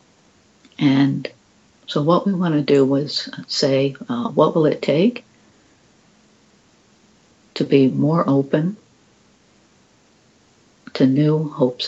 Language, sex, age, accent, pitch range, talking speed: English, female, 60-79, American, 135-225 Hz, 105 wpm